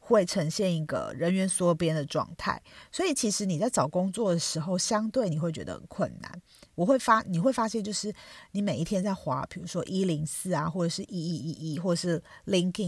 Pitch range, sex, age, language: 165-215 Hz, female, 40-59, Chinese